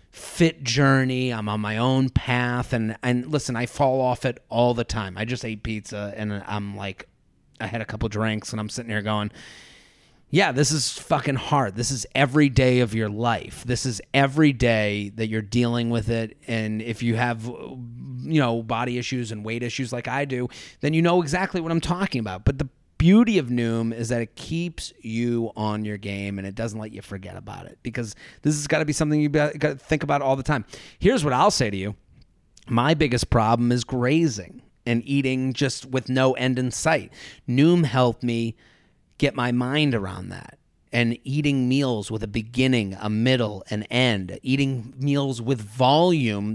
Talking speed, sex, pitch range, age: 200 wpm, male, 110-135 Hz, 30-49